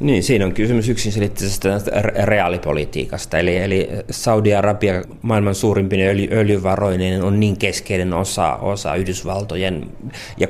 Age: 30-49